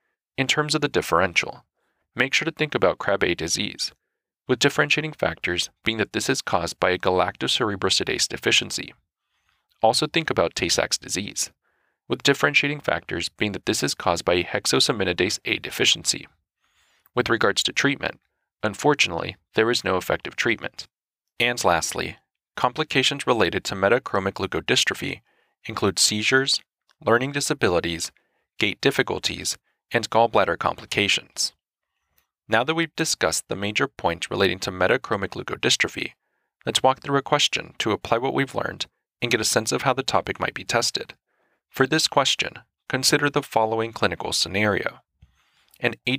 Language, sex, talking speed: English, male, 145 wpm